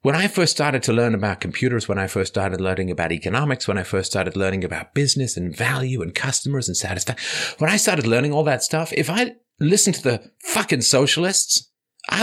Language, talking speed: English, 210 wpm